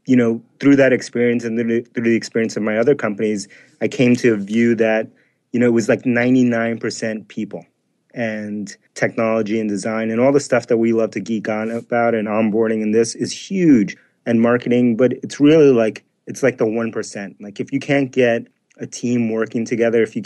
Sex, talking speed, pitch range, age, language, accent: male, 215 wpm, 110-120 Hz, 30-49, English, American